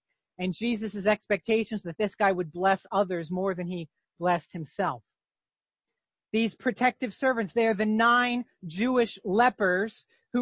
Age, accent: 40-59, American